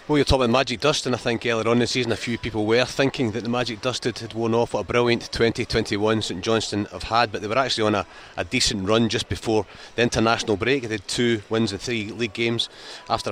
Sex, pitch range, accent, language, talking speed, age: male, 100-115 Hz, British, English, 255 wpm, 30-49